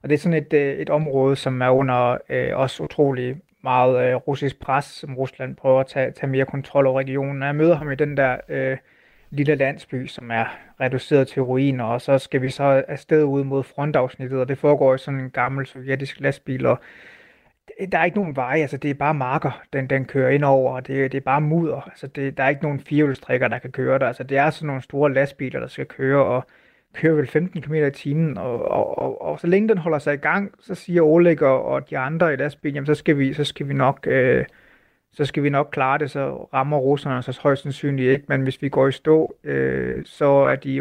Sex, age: male, 30-49